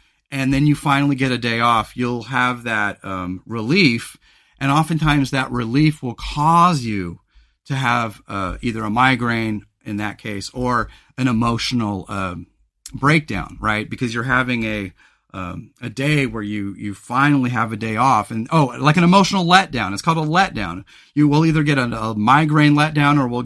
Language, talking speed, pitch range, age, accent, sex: English, 175 wpm, 115-155 Hz, 40-59, American, male